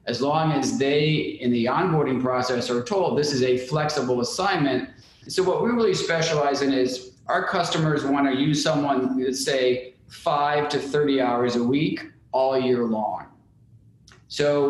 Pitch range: 125-155 Hz